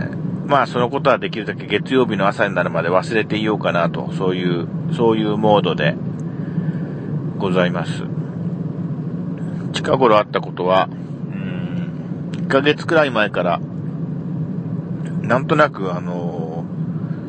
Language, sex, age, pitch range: Japanese, male, 40-59, 150-170 Hz